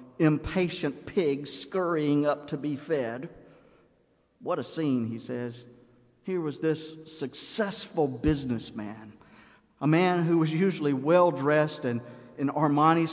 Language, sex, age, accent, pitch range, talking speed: English, male, 50-69, American, 115-150 Hz, 125 wpm